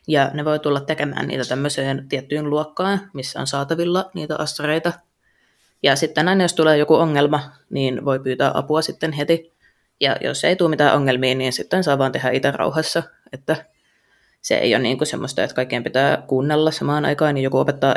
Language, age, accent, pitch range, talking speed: Finnish, 20-39, native, 135-160 Hz, 185 wpm